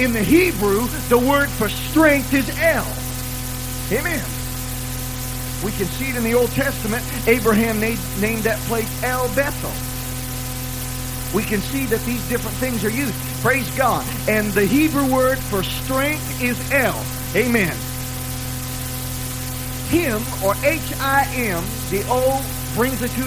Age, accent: 40-59, American